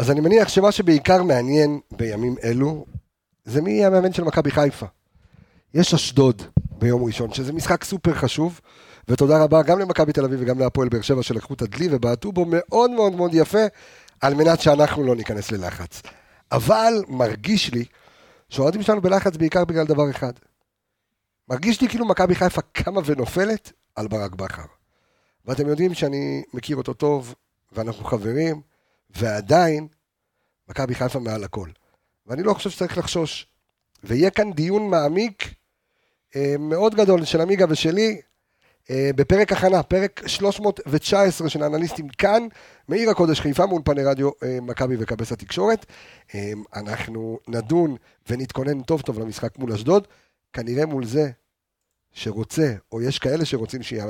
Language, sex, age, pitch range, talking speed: Hebrew, male, 50-69, 115-175 Hz, 140 wpm